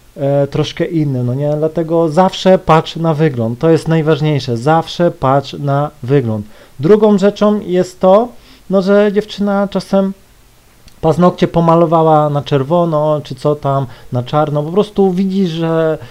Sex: male